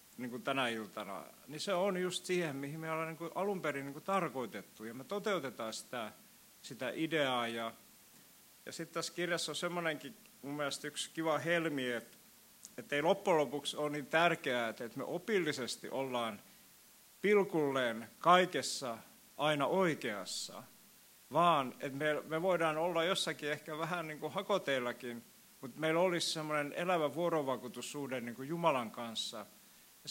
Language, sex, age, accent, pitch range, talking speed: Finnish, male, 50-69, native, 130-165 Hz, 140 wpm